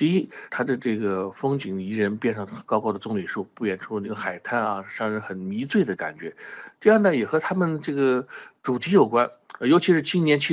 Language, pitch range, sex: Chinese, 100-135 Hz, male